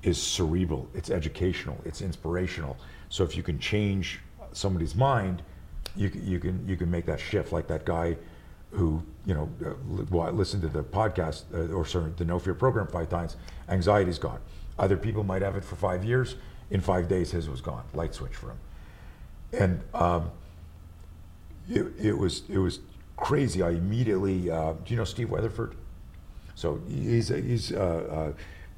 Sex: male